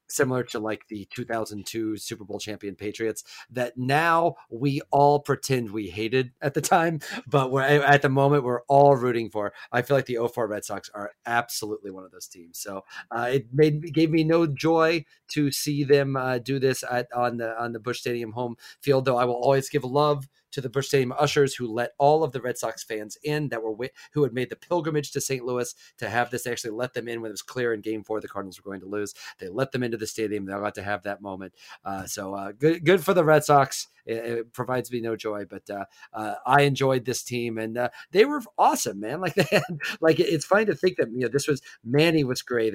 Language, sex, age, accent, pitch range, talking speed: English, male, 30-49, American, 115-145 Hz, 240 wpm